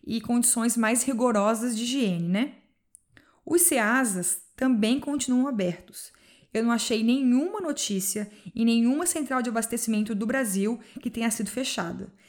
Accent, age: Brazilian, 20-39